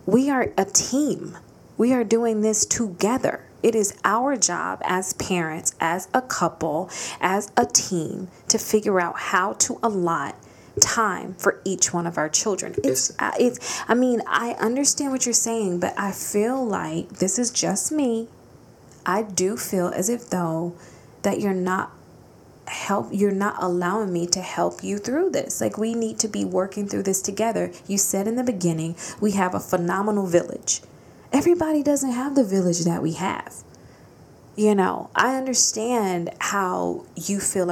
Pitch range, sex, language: 180-230 Hz, female, English